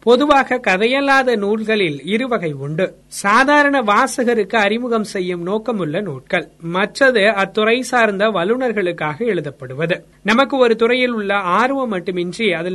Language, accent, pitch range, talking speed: Tamil, native, 180-240 Hz, 110 wpm